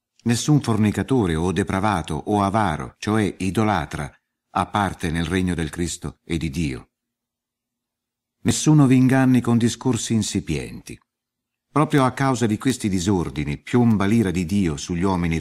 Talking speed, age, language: 135 wpm, 50-69, Italian